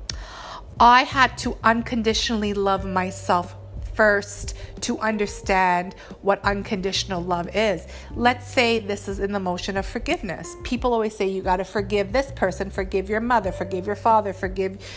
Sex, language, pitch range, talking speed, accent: female, English, 185-245 Hz, 150 wpm, American